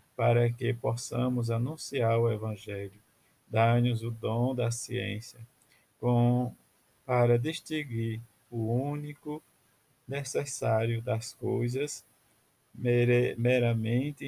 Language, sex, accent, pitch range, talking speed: Portuguese, male, Brazilian, 110-125 Hz, 85 wpm